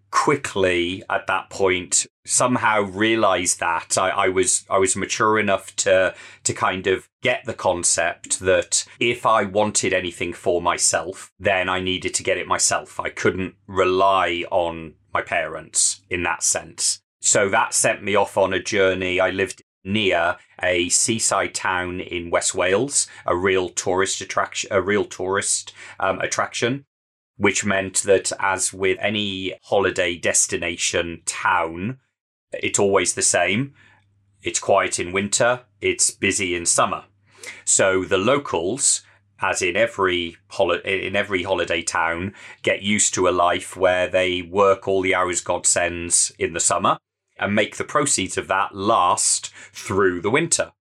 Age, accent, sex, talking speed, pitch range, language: 30-49, British, male, 150 wpm, 90-100 Hz, English